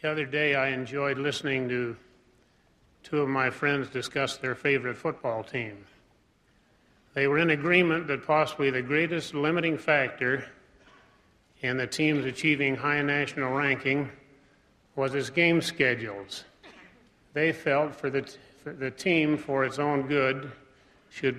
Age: 40-59